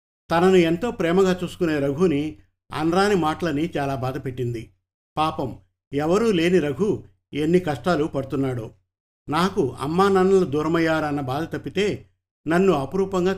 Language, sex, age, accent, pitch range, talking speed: Telugu, male, 50-69, native, 125-180 Hz, 110 wpm